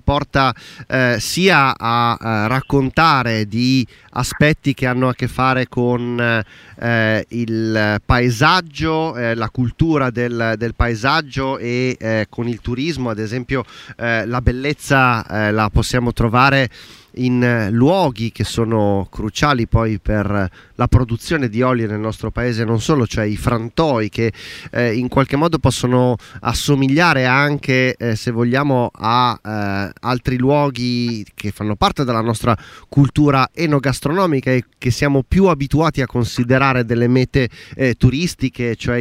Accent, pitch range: native, 115-140 Hz